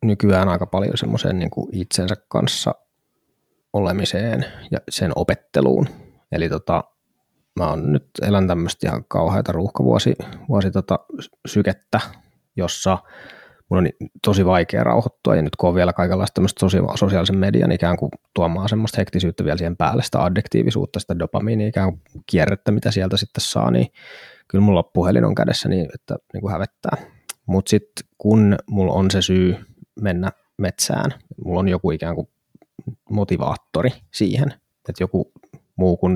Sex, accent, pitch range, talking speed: male, native, 90-105 Hz, 150 wpm